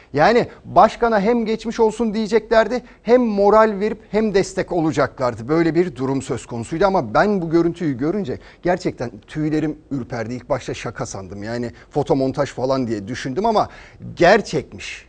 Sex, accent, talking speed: male, native, 145 wpm